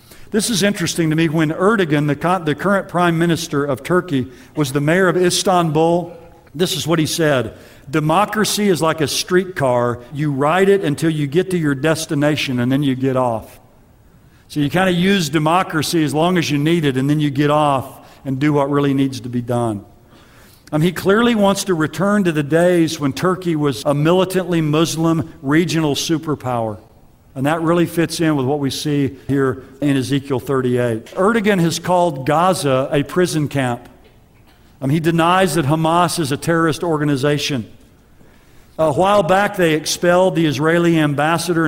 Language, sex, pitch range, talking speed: English, male, 135-170 Hz, 175 wpm